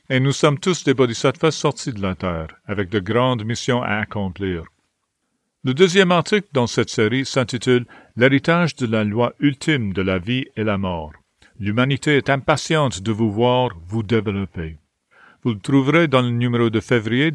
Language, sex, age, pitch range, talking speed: English, male, 50-69, 110-150 Hz, 180 wpm